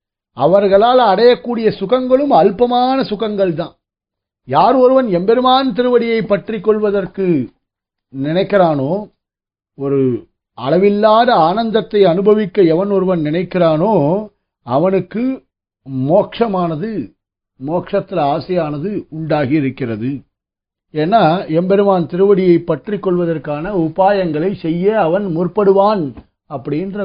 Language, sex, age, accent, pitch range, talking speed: Tamil, male, 50-69, native, 145-200 Hz, 80 wpm